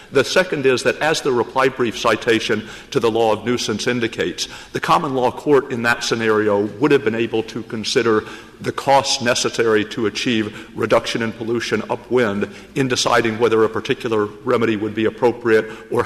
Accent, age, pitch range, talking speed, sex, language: American, 50-69, 110-125 Hz, 175 wpm, male, English